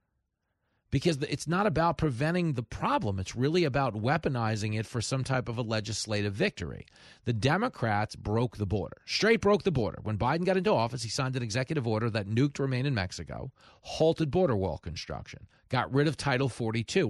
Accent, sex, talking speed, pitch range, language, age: American, male, 185 wpm, 110-145 Hz, English, 40-59